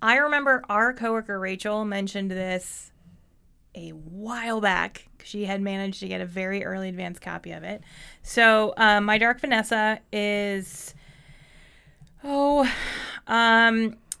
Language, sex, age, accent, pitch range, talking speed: English, female, 20-39, American, 185-215 Hz, 125 wpm